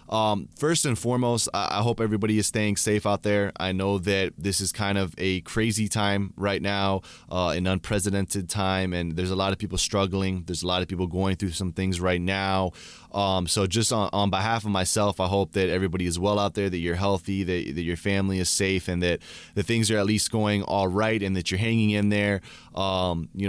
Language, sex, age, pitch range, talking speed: English, male, 20-39, 95-110 Hz, 225 wpm